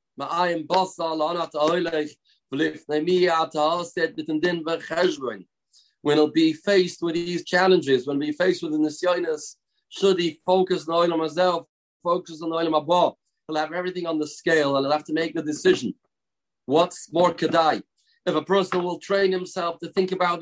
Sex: male